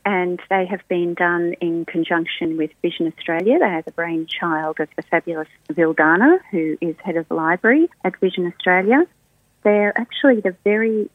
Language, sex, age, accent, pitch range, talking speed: English, female, 40-59, Australian, 165-210 Hz, 165 wpm